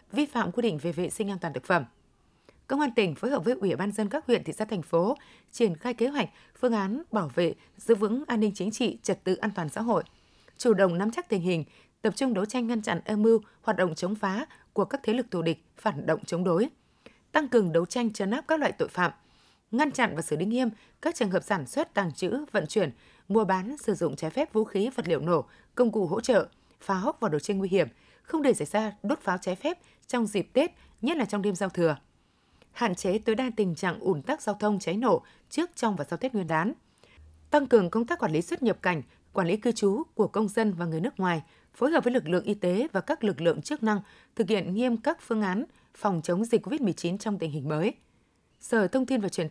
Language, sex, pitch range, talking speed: Vietnamese, female, 180-240 Hz, 255 wpm